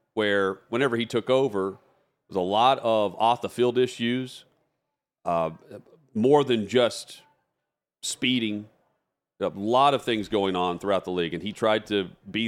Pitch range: 105-125 Hz